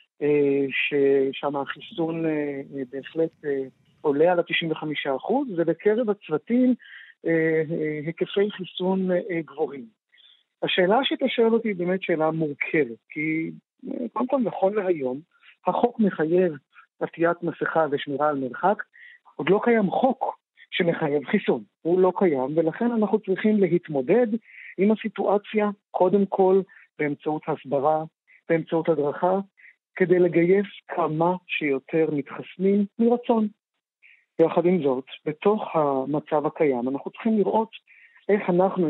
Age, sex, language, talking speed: 50-69, male, Hebrew, 110 wpm